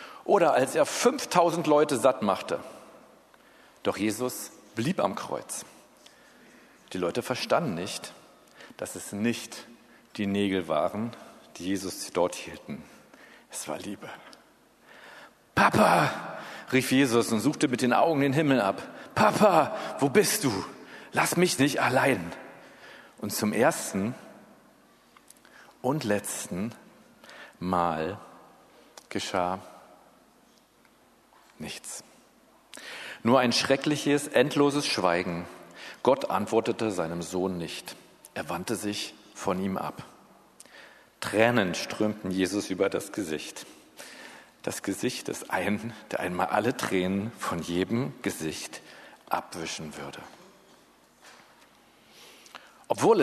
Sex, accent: male, German